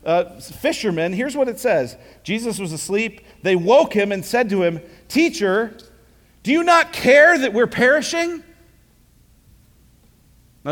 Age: 40-59